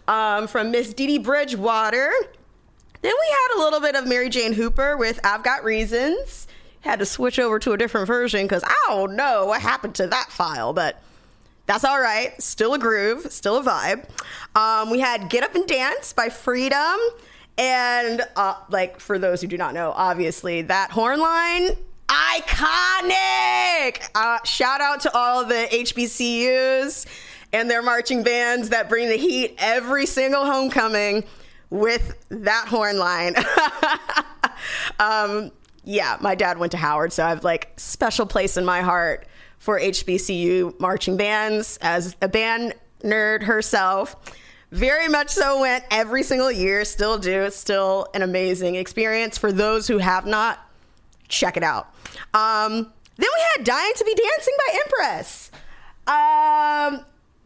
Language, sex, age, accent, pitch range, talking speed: English, female, 20-39, American, 200-265 Hz, 155 wpm